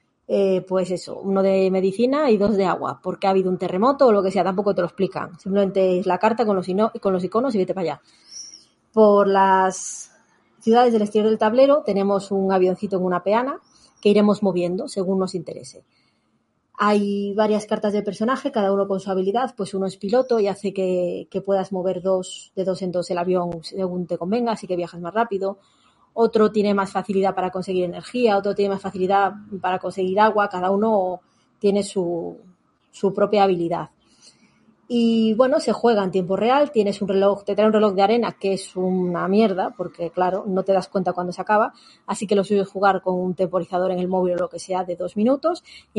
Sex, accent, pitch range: female, Spanish, 185-215 Hz